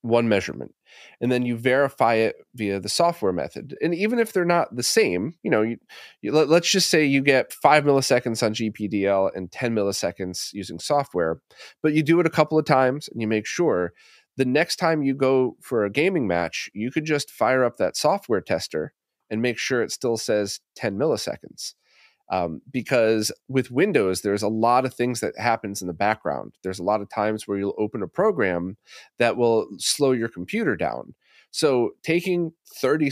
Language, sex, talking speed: English, male, 195 wpm